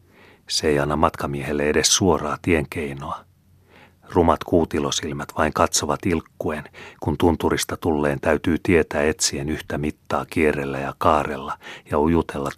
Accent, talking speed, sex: native, 120 wpm, male